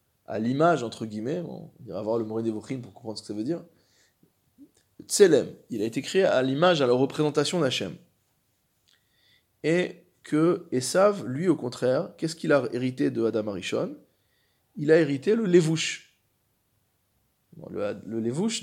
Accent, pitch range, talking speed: French, 115-160 Hz, 165 wpm